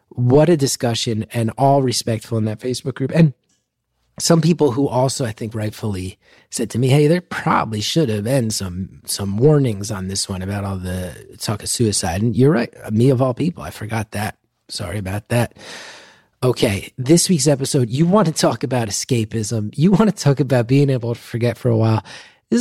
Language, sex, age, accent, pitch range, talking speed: English, male, 30-49, American, 110-140 Hz, 200 wpm